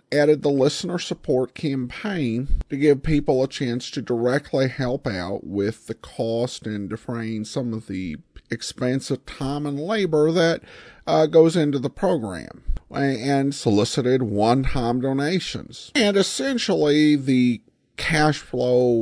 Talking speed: 130 wpm